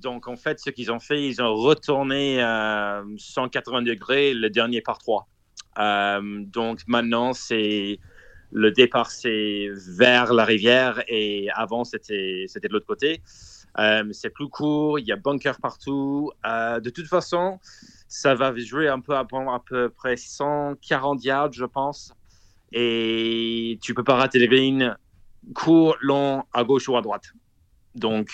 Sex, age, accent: male, 30-49, French